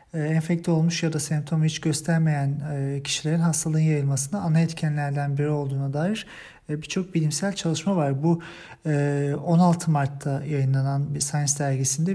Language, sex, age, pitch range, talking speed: German, male, 40-59, 140-170 Hz, 130 wpm